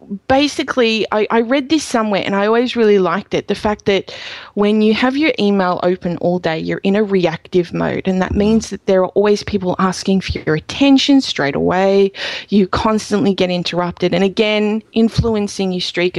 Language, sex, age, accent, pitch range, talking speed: English, female, 20-39, Australian, 185-230 Hz, 190 wpm